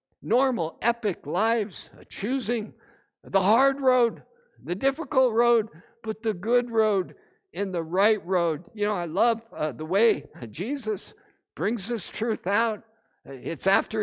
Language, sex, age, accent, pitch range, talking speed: English, male, 60-79, American, 205-265 Hz, 135 wpm